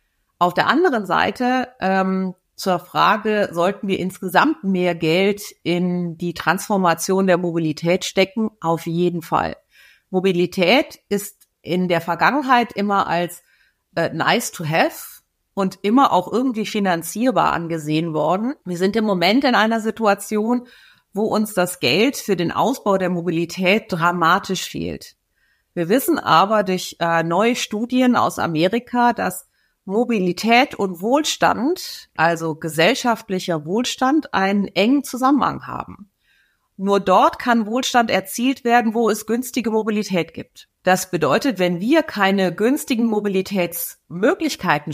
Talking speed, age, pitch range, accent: 125 wpm, 50-69, 175-235 Hz, German